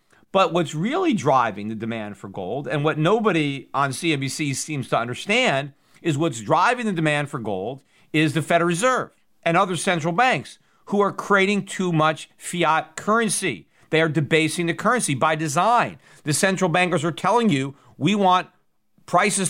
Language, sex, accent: English, male, American